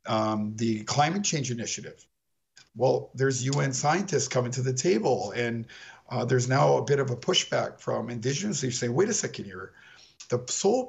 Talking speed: 175 wpm